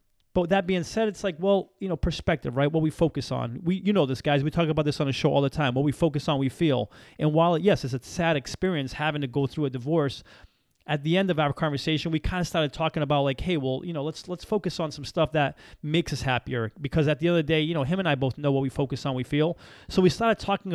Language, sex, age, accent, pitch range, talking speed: English, male, 30-49, American, 140-175 Hz, 290 wpm